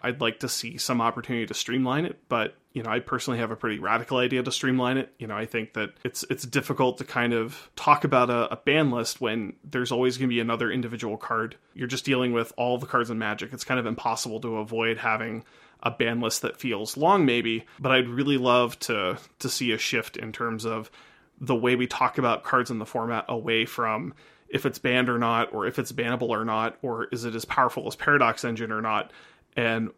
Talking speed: 230 wpm